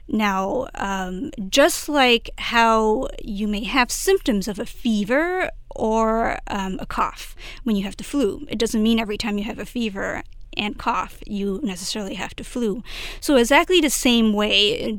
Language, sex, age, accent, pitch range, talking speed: English, female, 30-49, American, 210-260 Hz, 170 wpm